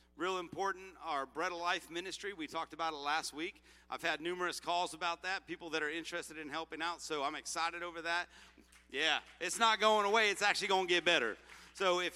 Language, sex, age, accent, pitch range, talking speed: English, male, 40-59, American, 145-195 Hz, 215 wpm